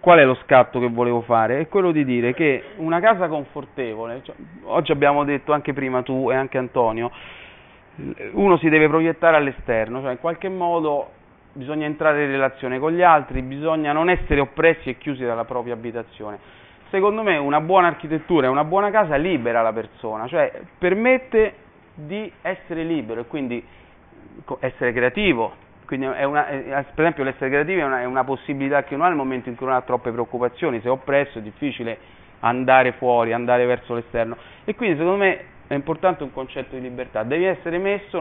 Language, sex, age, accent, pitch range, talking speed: Italian, male, 30-49, native, 120-160 Hz, 185 wpm